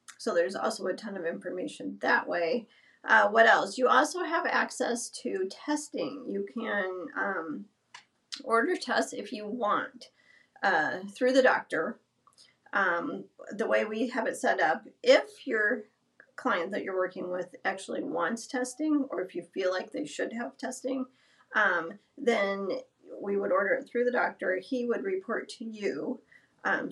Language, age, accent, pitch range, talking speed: English, 40-59, American, 180-245 Hz, 160 wpm